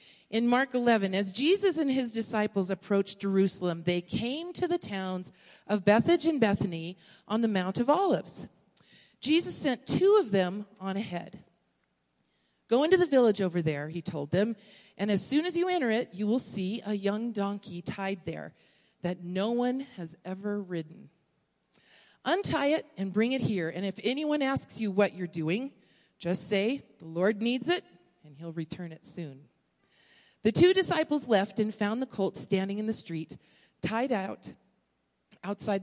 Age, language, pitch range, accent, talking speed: 40-59, English, 180-240 Hz, American, 170 wpm